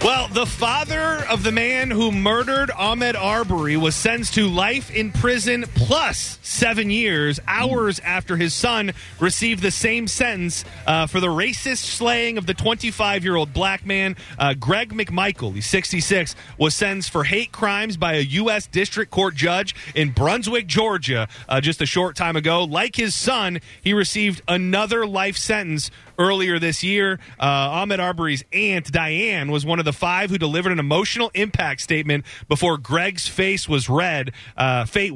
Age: 30-49